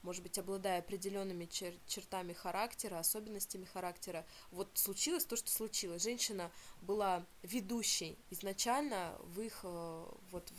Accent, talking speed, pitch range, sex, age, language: native, 115 wpm, 180-215 Hz, female, 20-39, Russian